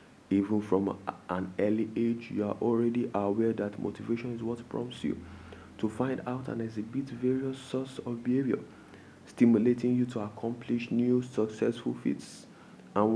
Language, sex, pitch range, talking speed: English, male, 105-120 Hz, 150 wpm